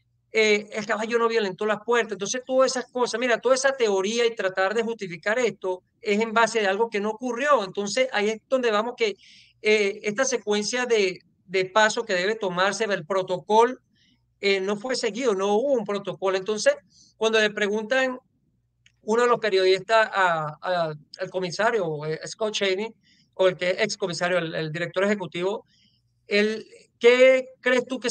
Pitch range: 185-230 Hz